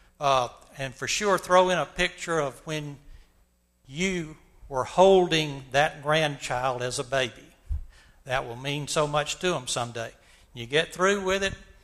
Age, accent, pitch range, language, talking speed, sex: 60-79, American, 130-170 Hz, English, 155 wpm, male